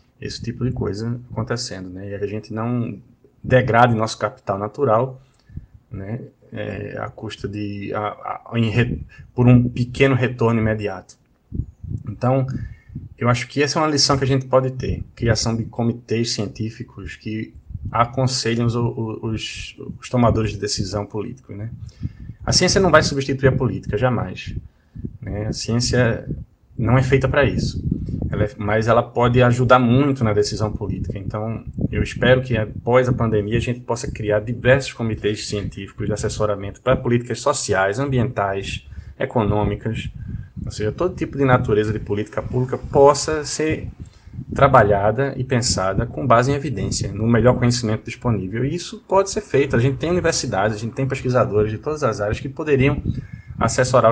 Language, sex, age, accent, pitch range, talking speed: Portuguese, male, 20-39, Brazilian, 105-130 Hz, 160 wpm